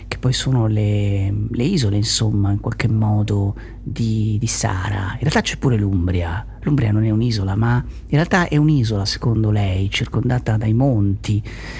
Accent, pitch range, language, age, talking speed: native, 105-125 Hz, Italian, 40-59, 165 wpm